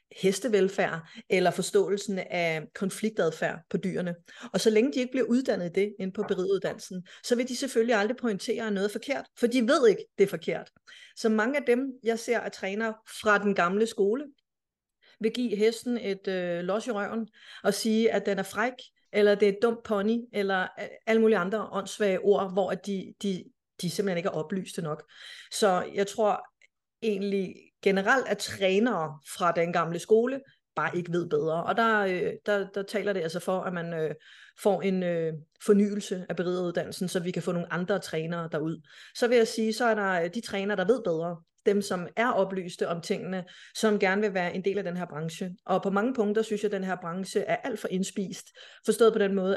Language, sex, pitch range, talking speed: Danish, female, 185-225 Hz, 195 wpm